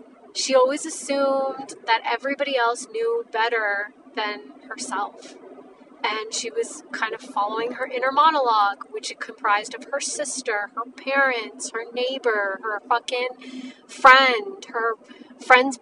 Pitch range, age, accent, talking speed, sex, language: 230-280 Hz, 30-49, American, 130 wpm, female, English